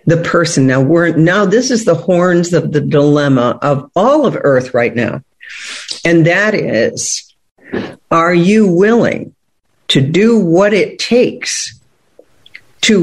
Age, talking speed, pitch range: 50-69, 140 wpm, 130-175 Hz